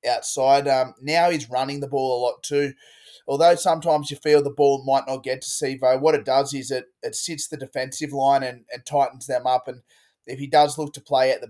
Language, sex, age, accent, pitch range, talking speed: English, male, 20-39, Australian, 130-150 Hz, 235 wpm